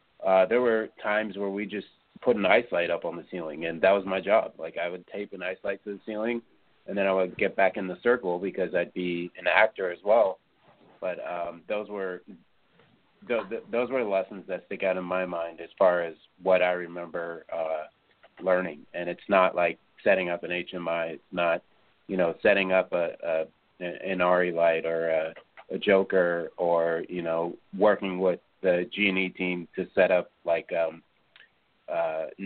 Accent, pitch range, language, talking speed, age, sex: American, 85-95 Hz, English, 200 wpm, 30-49, male